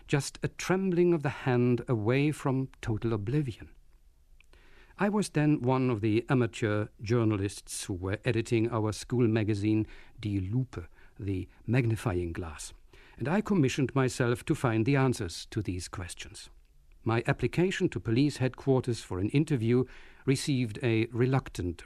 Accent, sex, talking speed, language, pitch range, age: German, male, 140 wpm, English, 100-135 Hz, 50-69